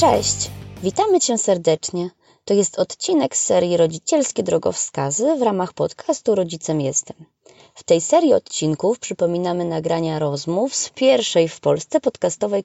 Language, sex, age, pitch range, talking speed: Polish, female, 20-39, 160-220 Hz, 135 wpm